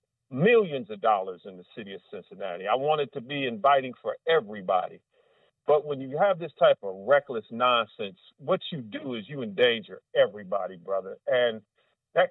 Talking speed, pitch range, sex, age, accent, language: 165 wpm, 120-170 Hz, male, 40-59, American, English